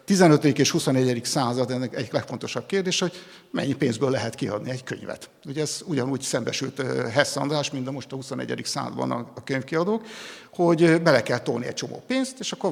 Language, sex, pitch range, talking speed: Hungarian, male, 130-160 Hz, 175 wpm